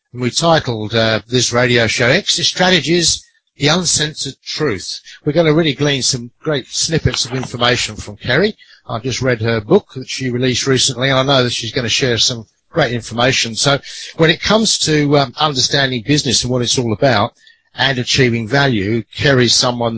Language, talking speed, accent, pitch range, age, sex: English, 185 wpm, British, 115-140 Hz, 60-79, male